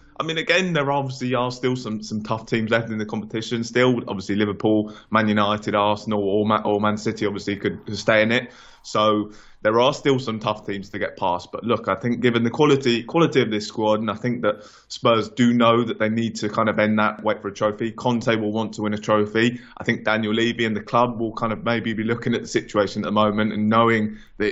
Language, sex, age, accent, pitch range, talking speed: English, male, 20-39, British, 105-120 Hz, 240 wpm